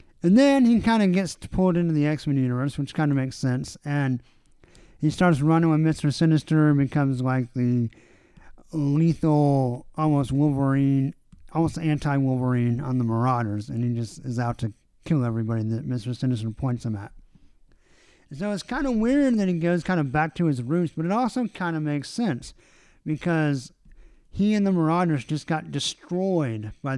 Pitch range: 130-165 Hz